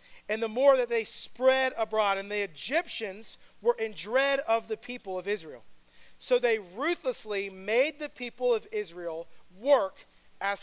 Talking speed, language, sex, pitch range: 160 wpm, English, male, 205-260 Hz